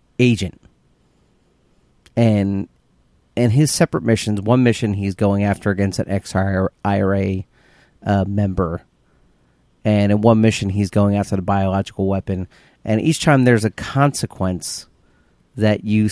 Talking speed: 125 wpm